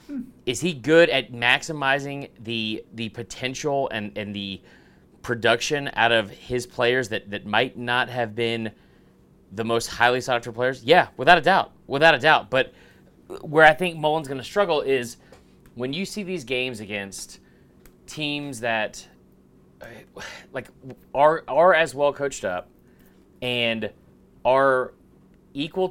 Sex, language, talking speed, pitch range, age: male, English, 145 wpm, 115-160 Hz, 30-49